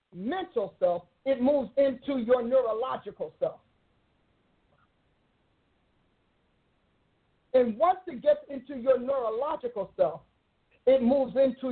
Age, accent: 50-69, American